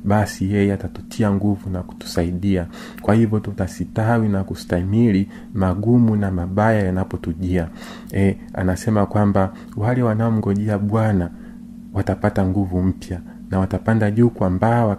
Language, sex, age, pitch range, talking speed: Swahili, male, 40-59, 95-115 Hz, 110 wpm